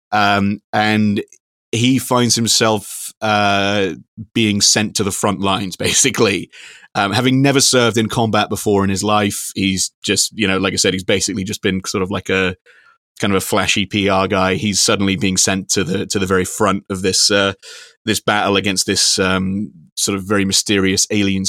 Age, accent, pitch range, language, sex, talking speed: 30-49, British, 100-120 Hz, English, male, 185 wpm